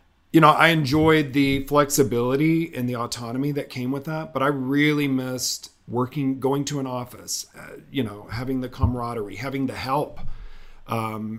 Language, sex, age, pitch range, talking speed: English, male, 40-59, 105-140 Hz, 170 wpm